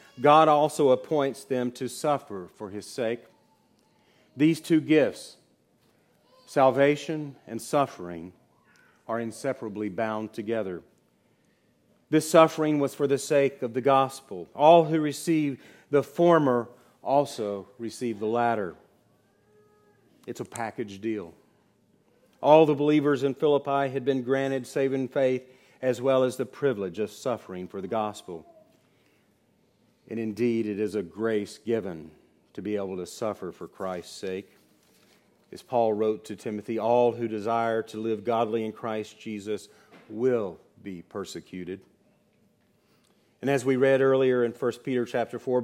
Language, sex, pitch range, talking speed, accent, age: English, male, 110-140 Hz, 135 wpm, American, 40-59